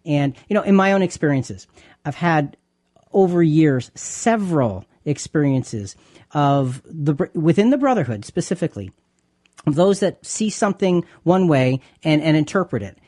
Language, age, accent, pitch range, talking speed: English, 40-59, American, 145-205 Hz, 140 wpm